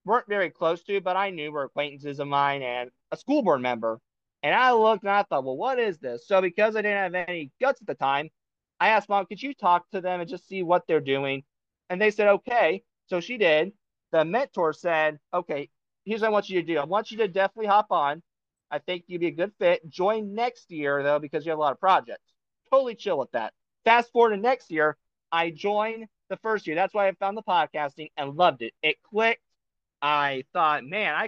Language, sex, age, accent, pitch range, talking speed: English, male, 30-49, American, 160-220 Hz, 235 wpm